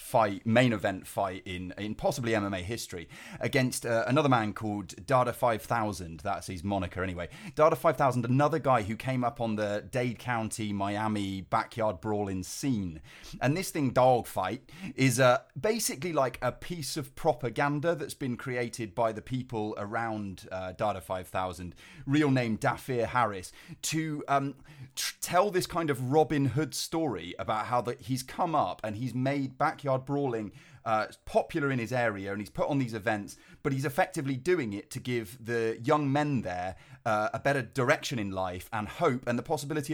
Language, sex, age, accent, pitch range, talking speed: English, male, 30-49, British, 110-150 Hz, 175 wpm